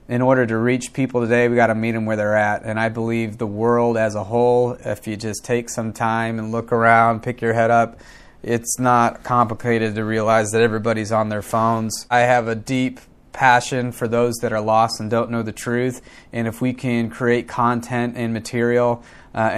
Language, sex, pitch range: English, male, 115-135 Hz